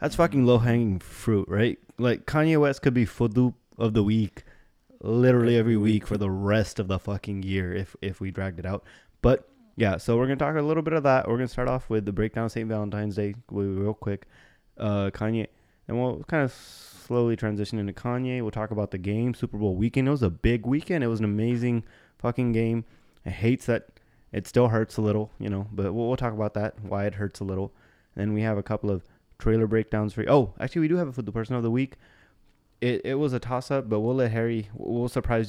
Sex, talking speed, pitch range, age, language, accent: male, 235 wpm, 100-120 Hz, 20-39, English, American